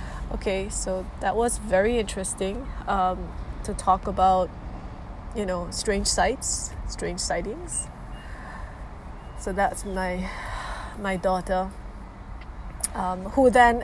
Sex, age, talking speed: female, 20-39, 105 wpm